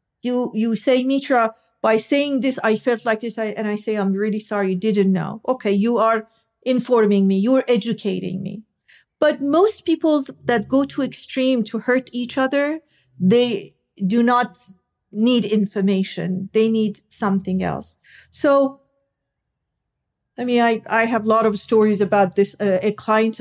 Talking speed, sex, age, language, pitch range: 165 wpm, female, 50-69, English, 200-245 Hz